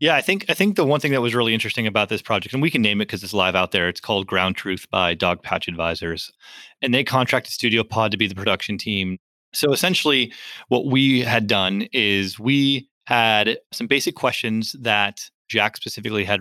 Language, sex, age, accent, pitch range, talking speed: English, male, 30-49, American, 105-130 Hz, 215 wpm